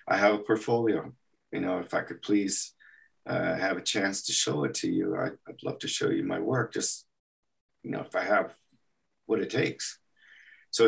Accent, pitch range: American, 95-115 Hz